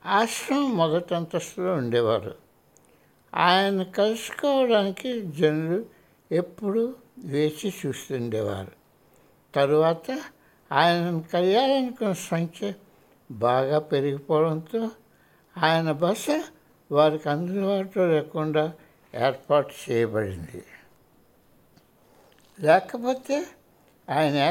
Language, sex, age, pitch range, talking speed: Hindi, male, 60-79, 145-205 Hz, 50 wpm